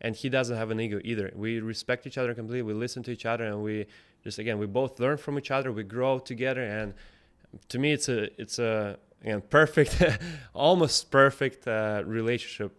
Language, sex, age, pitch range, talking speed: English, male, 20-39, 105-130 Hz, 200 wpm